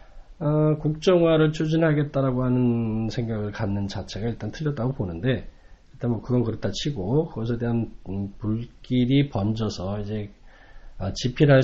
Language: Korean